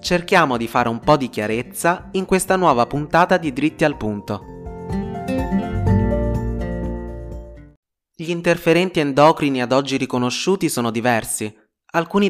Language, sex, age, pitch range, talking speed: Italian, male, 20-39, 115-160 Hz, 115 wpm